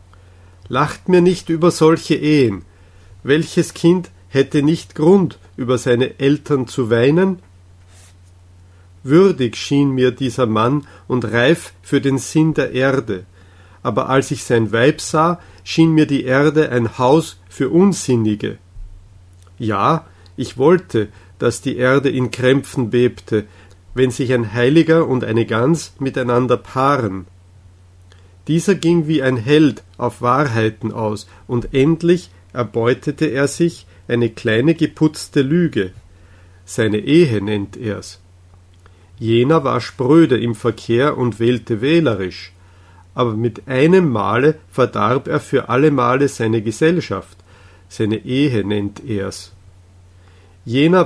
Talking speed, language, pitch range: 125 wpm, German, 95-145 Hz